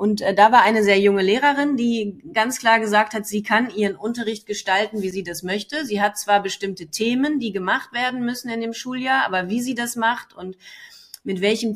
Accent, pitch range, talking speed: German, 200-240 Hz, 210 wpm